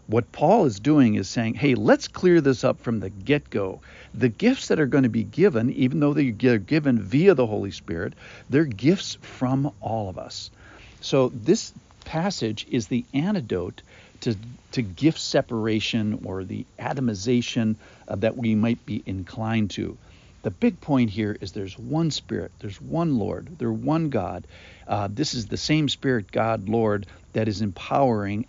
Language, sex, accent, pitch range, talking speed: English, male, American, 100-130 Hz, 175 wpm